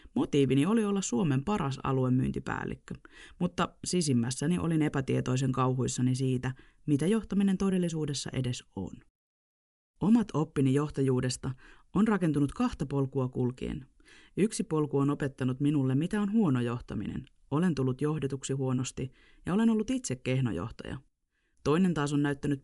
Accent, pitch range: native, 130-185 Hz